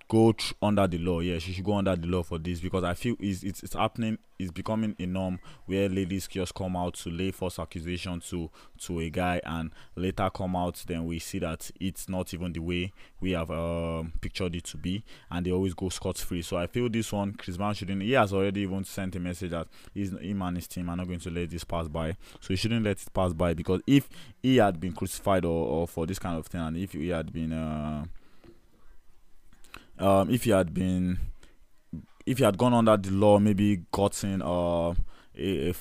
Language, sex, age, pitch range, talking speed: English, male, 20-39, 85-100 Hz, 225 wpm